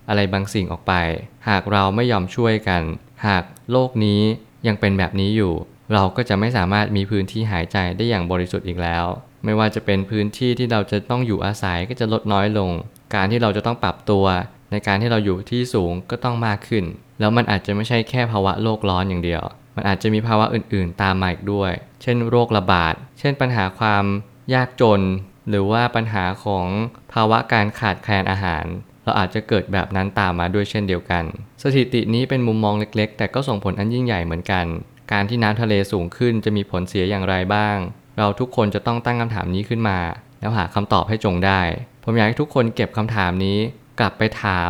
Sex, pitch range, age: male, 95-115 Hz, 20-39